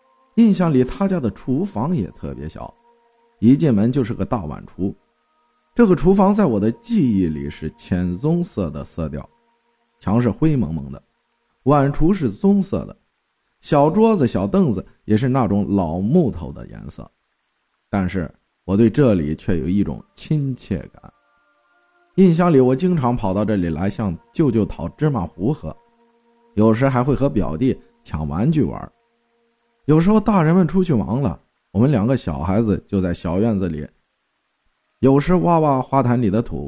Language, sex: Chinese, male